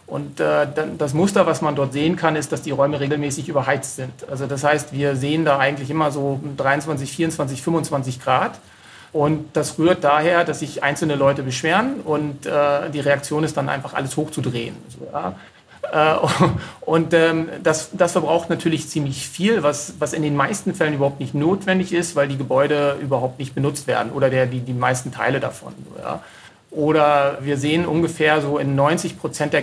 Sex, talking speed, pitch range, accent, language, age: male, 165 wpm, 140-165 Hz, German, German, 40-59